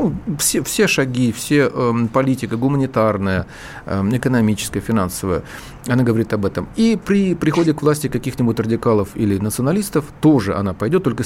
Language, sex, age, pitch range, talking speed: Russian, male, 40-59, 110-145 Hz, 140 wpm